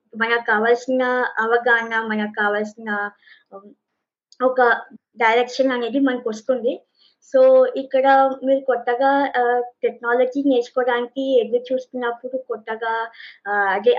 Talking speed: 85 wpm